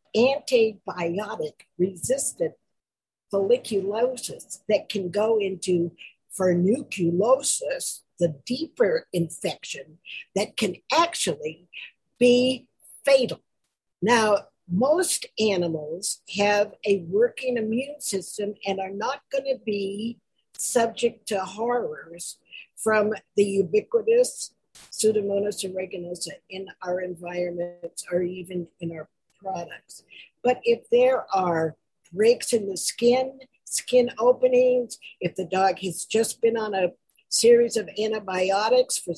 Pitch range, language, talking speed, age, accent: 185-250 Hz, English, 105 wpm, 50-69, American